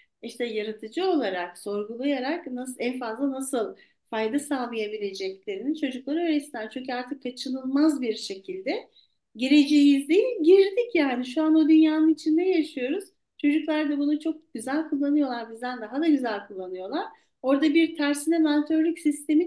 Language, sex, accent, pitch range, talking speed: Turkish, female, native, 240-325 Hz, 135 wpm